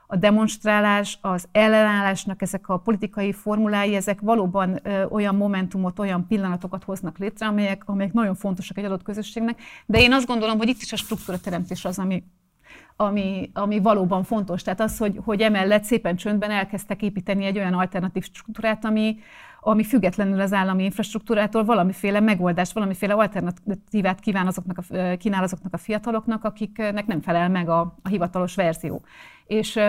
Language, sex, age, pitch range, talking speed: Hungarian, female, 30-49, 190-220 Hz, 155 wpm